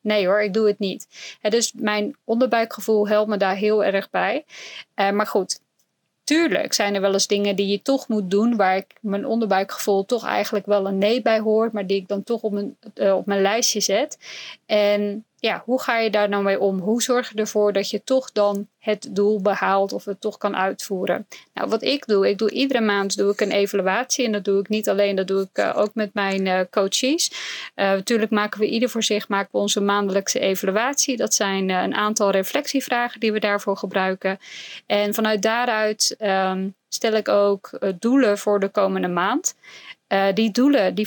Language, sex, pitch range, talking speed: Dutch, female, 195-220 Hz, 210 wpm